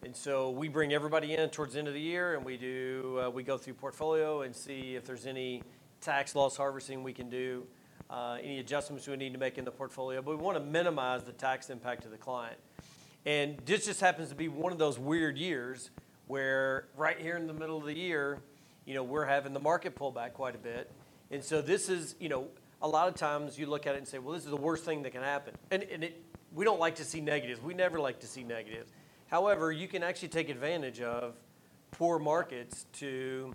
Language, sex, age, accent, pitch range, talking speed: English, male, 40-59, American, 130-160 Hz, 235 wpm